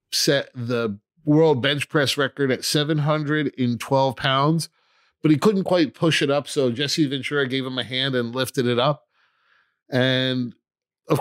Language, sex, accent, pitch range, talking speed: English, male, American, 125-150 Hz, 165 wpm